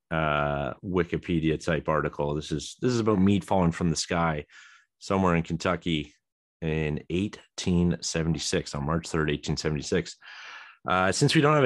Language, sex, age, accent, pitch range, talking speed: English, male, 30-49, American, 80-100 Hz, 145 wpm